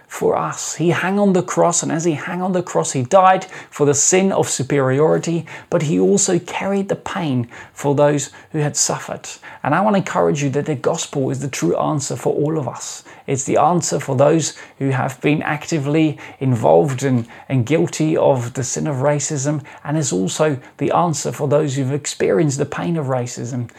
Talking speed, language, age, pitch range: 200 wpm, English, 20-39, 145-185 Hz